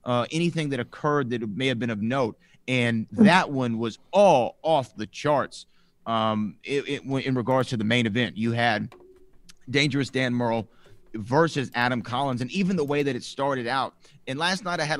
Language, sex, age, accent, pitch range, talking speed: English, male, 30-49, American, 120-155 Hz, 185 wpm